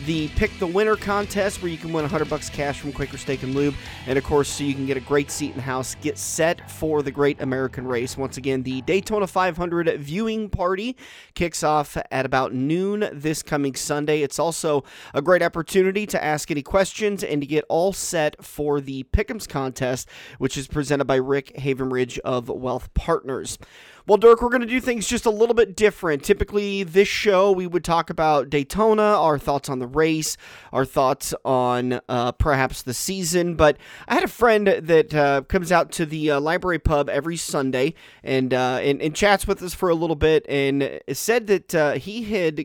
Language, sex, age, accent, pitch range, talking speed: English, male, 30-49, American, 135-185 Hz, 205 wpm